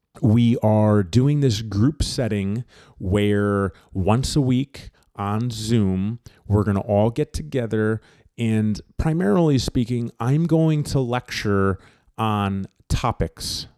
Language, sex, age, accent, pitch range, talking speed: English, male, 30-49, American, 105-145 Hz, 120 wpm